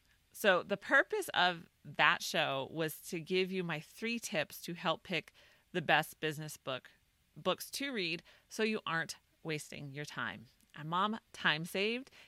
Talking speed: 160 wpm